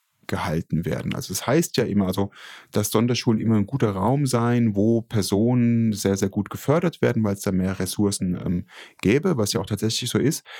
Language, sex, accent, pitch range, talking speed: German, male, German, 100-120 Hz, 210 wpm